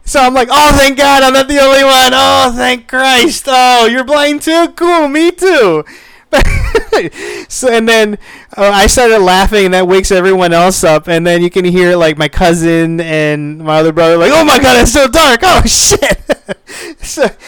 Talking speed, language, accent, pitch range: 190 wpm, English, American, 170-275 Hz